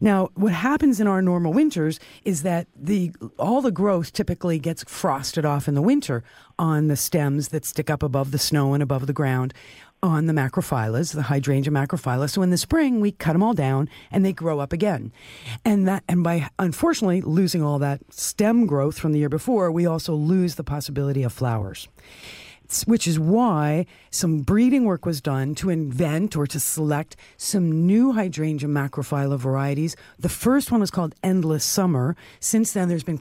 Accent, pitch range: American, 145-195 Hz